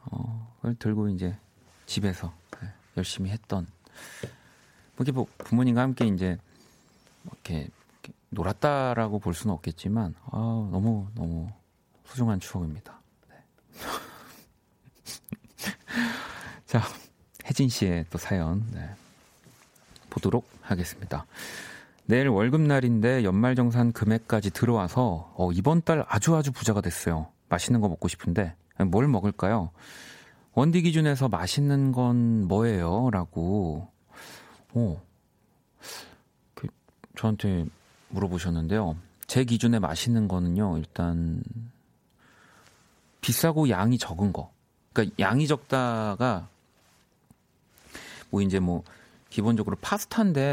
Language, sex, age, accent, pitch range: Korean, male, 40-59, native, 90-125 Hz